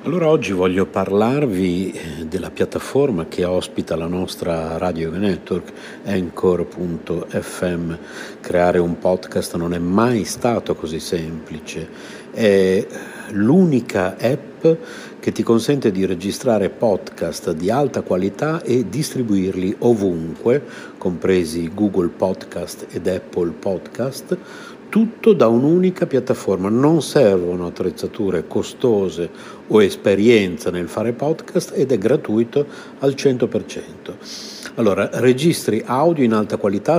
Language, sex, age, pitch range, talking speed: Italian, male, 60-79, 95-120 Hz, 110 wpm